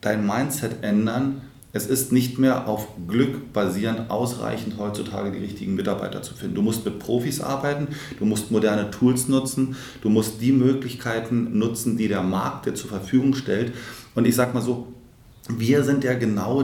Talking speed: 175 wpm